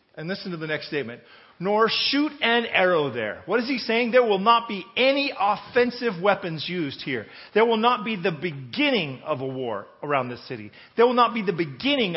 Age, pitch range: 40-59, 175-250 Hz